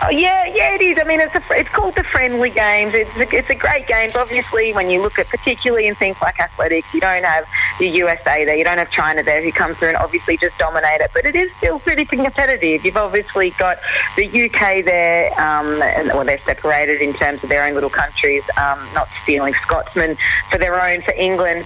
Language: English